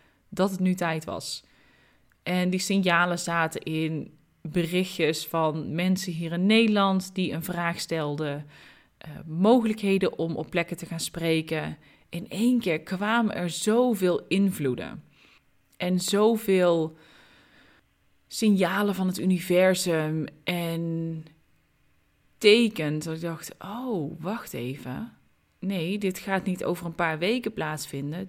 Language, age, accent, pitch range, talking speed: Dutch, 20-39, Dutch, 160-195 Hz, 125 wpm